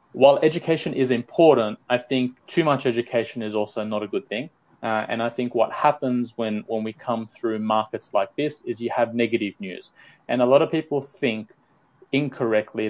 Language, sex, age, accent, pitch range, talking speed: English, male, 20-39, Australian, 115-135 Hz, 190 wpm